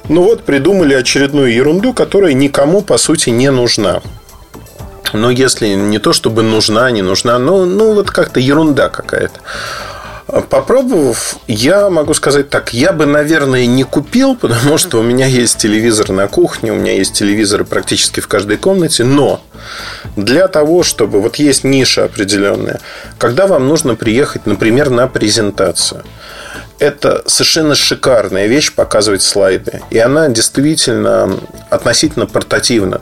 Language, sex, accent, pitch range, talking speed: Russian, male, native, 110-155 Hz, 140 wpm